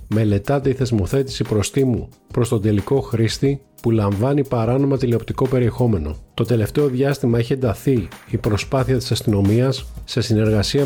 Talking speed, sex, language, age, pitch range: 135 wpm, male, Greek, 40-59, 110-135 Hz